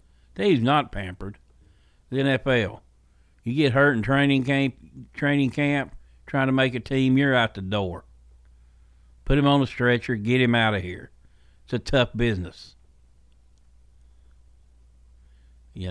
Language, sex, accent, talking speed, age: English, male, American, 140 wpm, 60-79